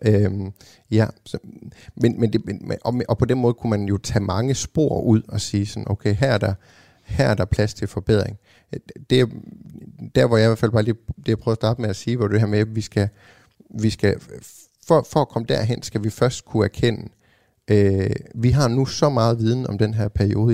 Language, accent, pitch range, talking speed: Danish, native, 105-120 Hz, 225 wpm